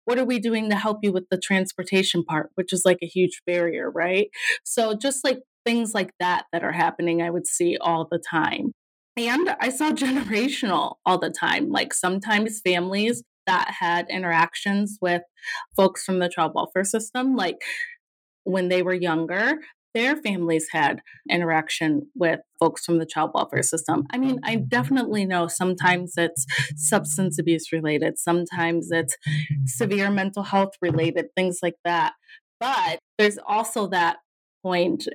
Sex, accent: female, American